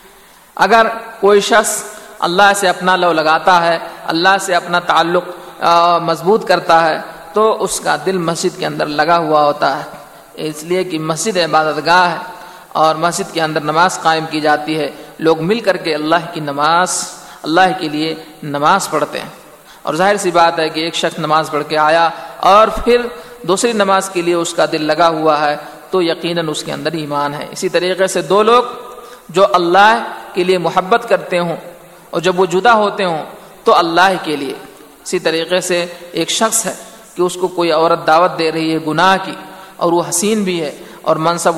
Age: 50-69